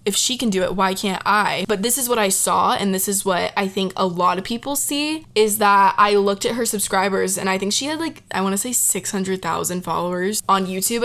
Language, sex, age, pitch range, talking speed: English, female, 20-39, 190-220 Hz, 250 wpm